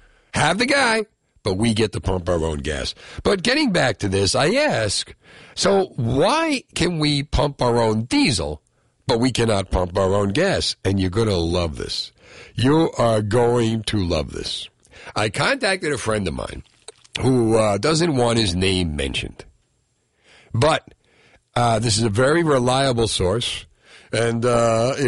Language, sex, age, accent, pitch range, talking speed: English, male, 50-69, American, 100-145 Hz, 165 wpm